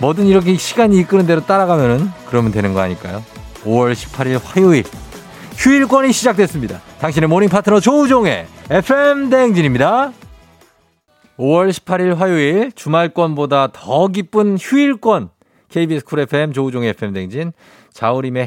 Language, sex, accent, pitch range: Korean, male, native, 105-155 Hz